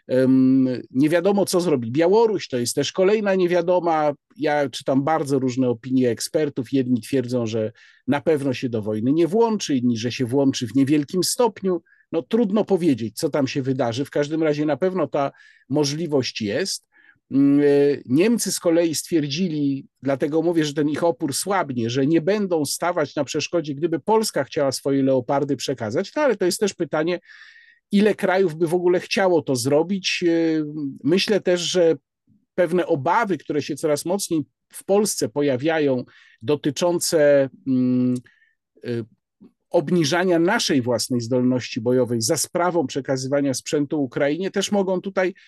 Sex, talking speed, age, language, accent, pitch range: male, 145 wpm, 50-69, Polish, native, 140-195 Hz